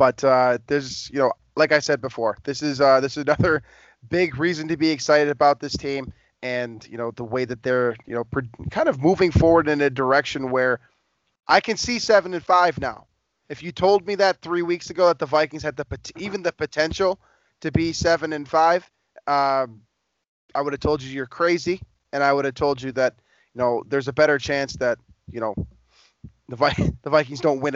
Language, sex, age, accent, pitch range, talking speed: English, male, 20-39, American, 125-155 Hz, 210 wpm